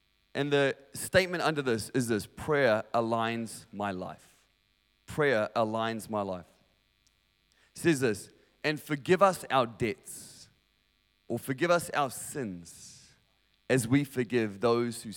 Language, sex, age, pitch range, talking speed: English, male, 30-49, 110-165 Hz, 130 wpm